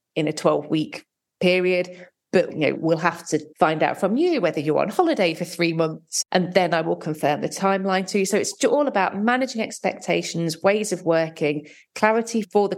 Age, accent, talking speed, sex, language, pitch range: 40-59, British, 195 wpm, female, English, 155-185 Hz